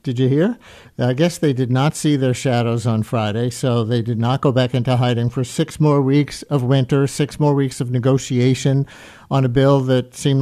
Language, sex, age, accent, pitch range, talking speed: English, male, 50-69, American, 120-150 Hz, 215 wpm